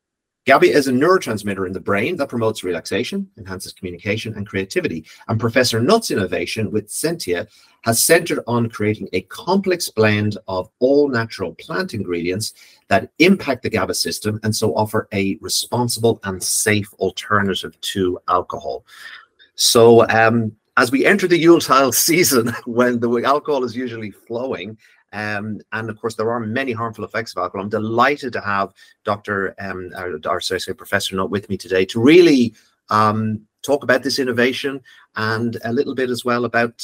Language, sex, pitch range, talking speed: English, male, 105-130 Hz, 160 wpm